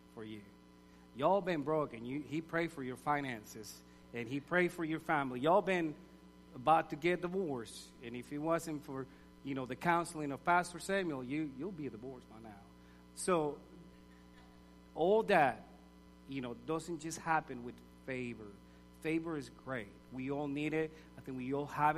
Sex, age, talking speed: male, 40-59, 165 wpm